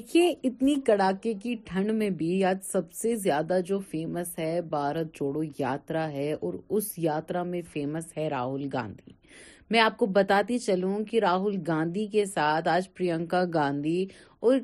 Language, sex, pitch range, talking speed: Urdu, female, 175-230 Hz, 165 wpm